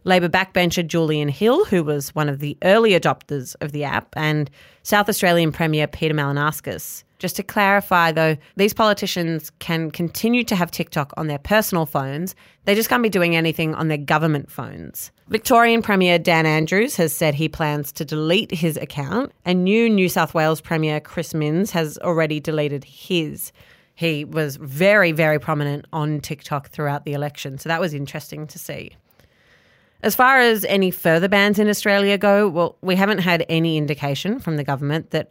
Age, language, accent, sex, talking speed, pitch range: 30-49, English, Australian, female, 175 wpm, 150-185 Hz